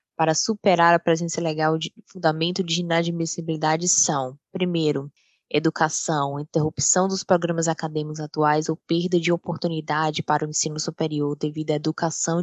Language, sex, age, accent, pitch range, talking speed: English, female, 10-29, Brazilian, 155-180 Hz, 135 wpm